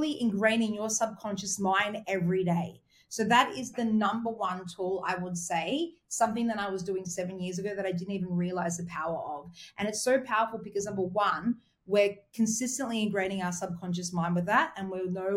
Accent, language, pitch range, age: Australian, English, 185-240 Hz, 30-49